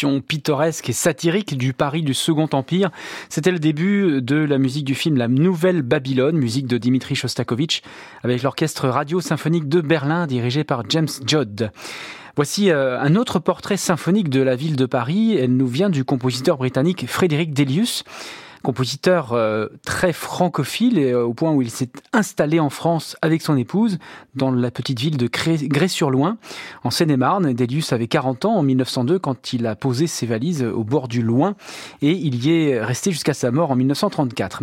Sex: male